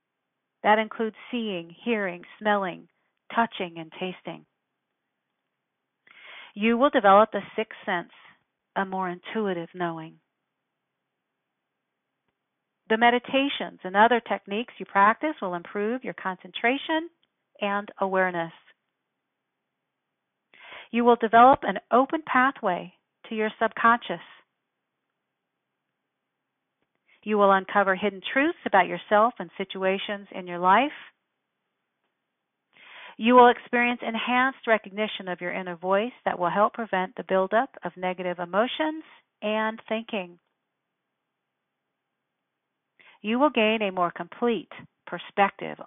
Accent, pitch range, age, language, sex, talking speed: American, 180-230 Hz, 40-59, English, female, 105 wpm